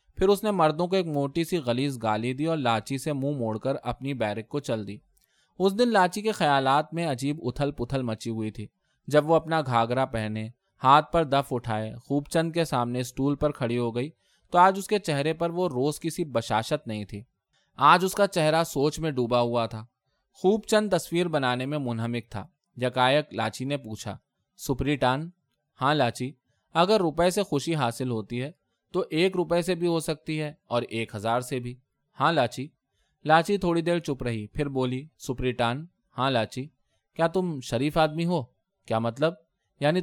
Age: 20-39